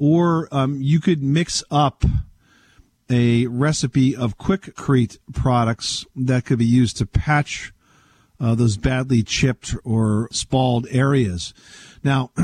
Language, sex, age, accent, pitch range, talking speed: English, male, 50-69, American, 115-140 Hz, 120 wpm